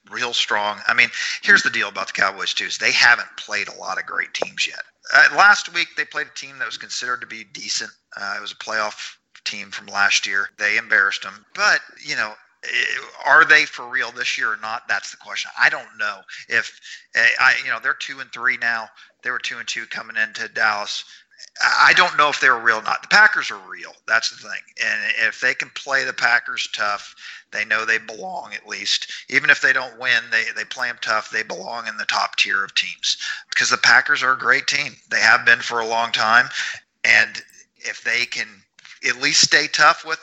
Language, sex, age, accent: English, male, 40-59, American